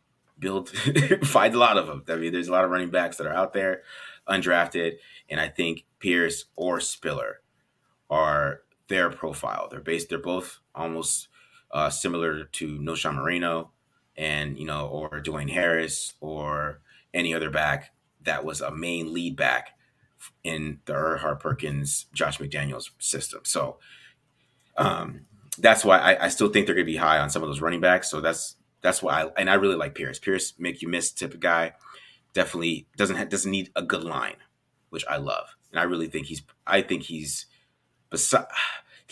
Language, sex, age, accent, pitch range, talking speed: English, male, 30-49, American, 75-95 Hz, 175 wpm